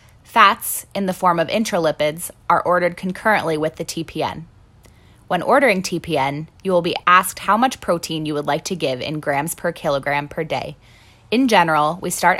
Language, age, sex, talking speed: English, 20-39, female, 180 wpm